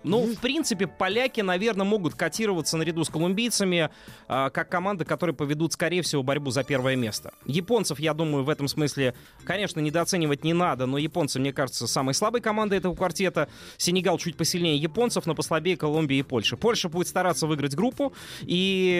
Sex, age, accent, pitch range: male, 20-39, native, 150-190 Hz